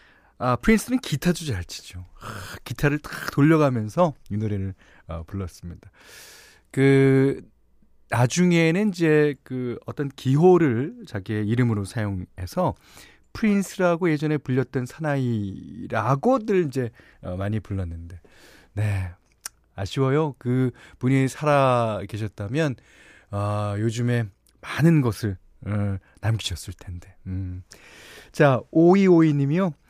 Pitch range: 105-160 Hz